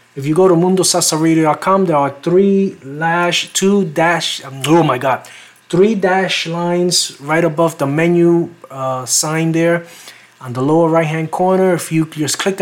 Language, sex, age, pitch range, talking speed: English, male, 30-49, 140-175 Hz, 155 wpm